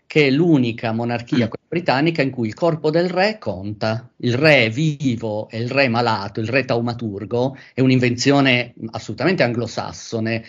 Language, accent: Italian, native